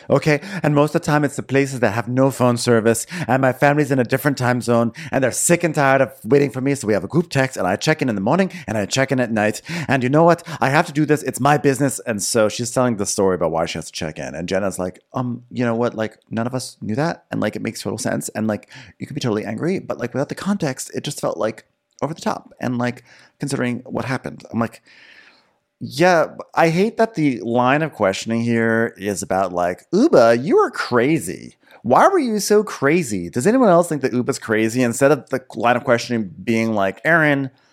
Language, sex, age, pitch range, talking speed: English, male, 30-49, 115-150 Hz, 250 wpm